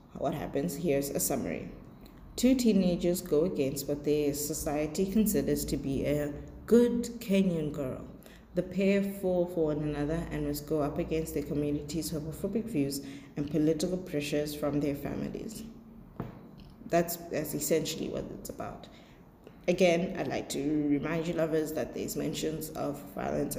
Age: 20-39